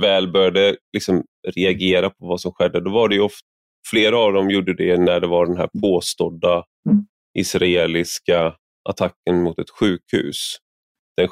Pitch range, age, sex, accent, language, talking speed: 90-105 Hz, 30-49, male, Swedish, English, 155 wpm